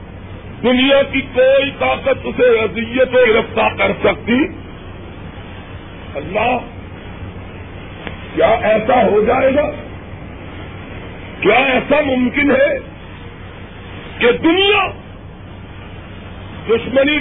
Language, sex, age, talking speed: Urdu, male, 50-69, 80 wpm